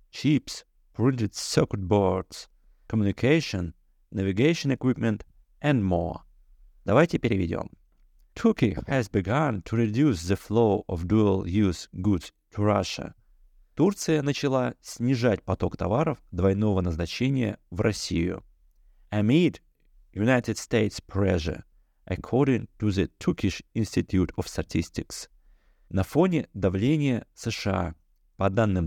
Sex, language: male, Russian